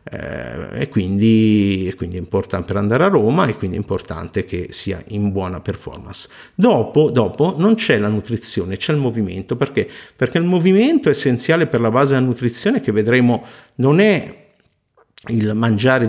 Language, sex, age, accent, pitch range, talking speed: Italian, male, 50-69, native, 110-140 Hz, 170 wpm